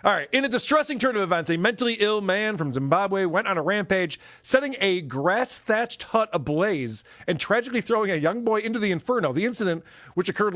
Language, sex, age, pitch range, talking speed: English, male, 40-59, 150-215 Hz, 205 wpm